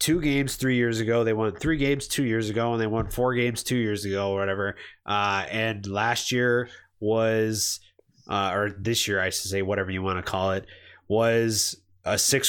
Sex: male